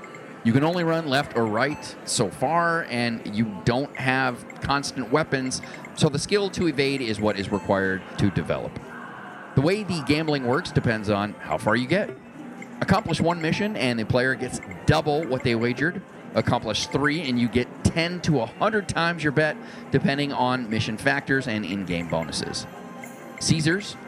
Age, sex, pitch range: 30-49, male, 110-150 Hz